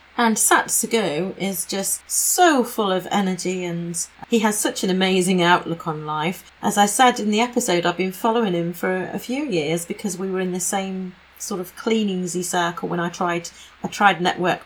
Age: 40-59